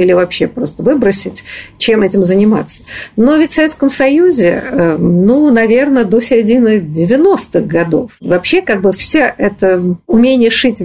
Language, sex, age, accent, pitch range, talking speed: Russian, female, 50-69, native, 190-270 Hz, 140 wpm